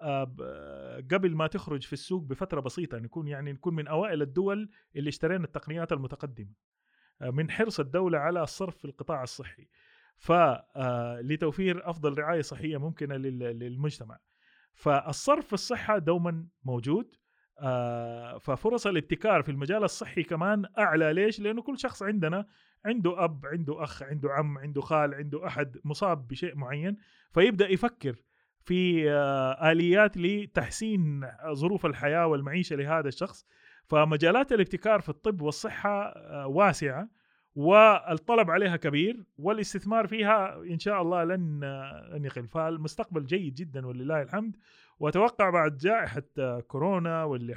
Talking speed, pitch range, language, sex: 120 wpm, 140-190 Hz, Arabic, male